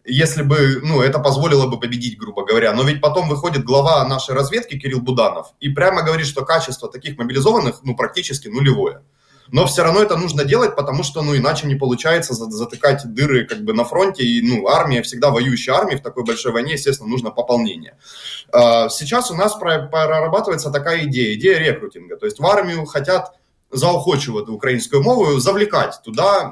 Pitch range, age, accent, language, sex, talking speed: 130-175 Hz, 20-39, native, Russian, male, 175 wpm